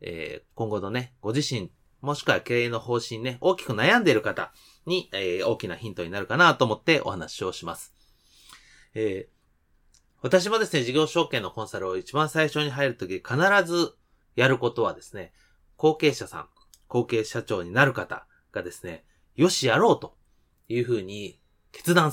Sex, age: male, 30-49